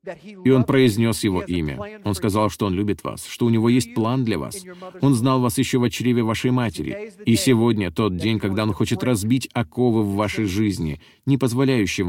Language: Russian